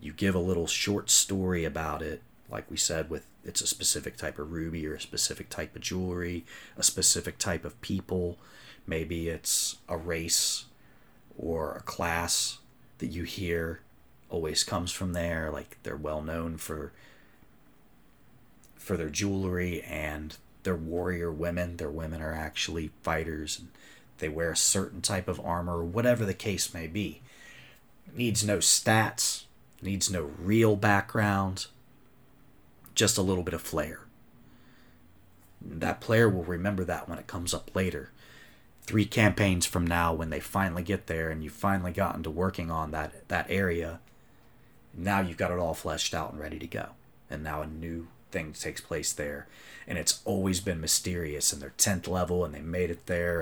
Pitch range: 80-95 Hz